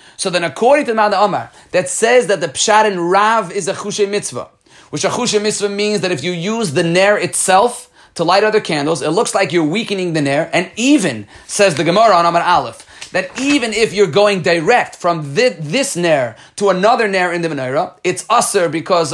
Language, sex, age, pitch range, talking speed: Hebrew, male, 30-49, 160-210 Hz, 210 wpm